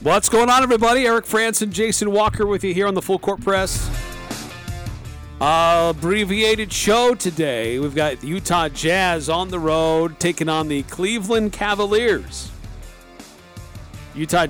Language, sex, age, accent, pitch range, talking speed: English, male, 40-59, American, 130-175 Hz, 135 wpm